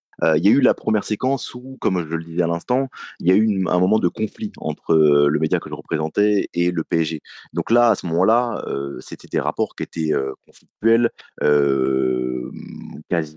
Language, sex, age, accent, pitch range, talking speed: French, male, 30-49, French, 75-105 Hz, 205 wpm